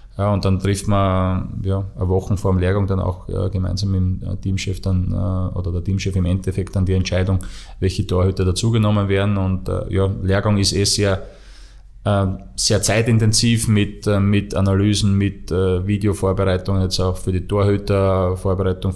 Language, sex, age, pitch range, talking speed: German, male, 20-39, 95-100 Hz, 165 wpm